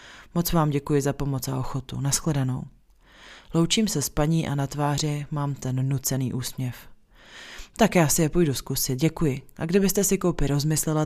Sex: female